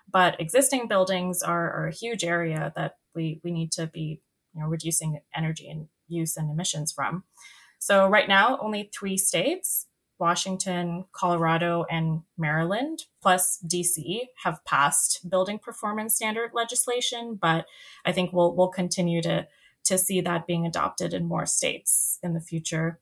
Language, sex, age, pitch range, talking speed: English, female, 20-39, 165-195 Hz, 150 wpm